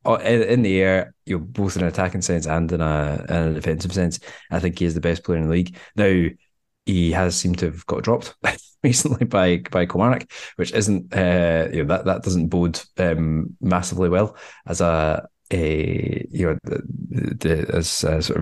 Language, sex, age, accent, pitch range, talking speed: English, male, 20-39, British, 85-95 Hz, 200 wpm